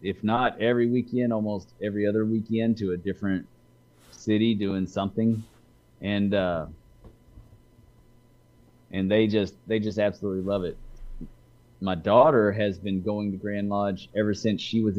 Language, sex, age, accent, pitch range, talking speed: English, male, 30-49, American, 100-120 Hz, 145 wpm